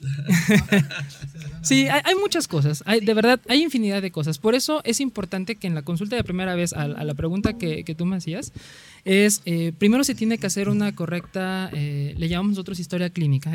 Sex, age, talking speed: male, 20-39, 195 wpm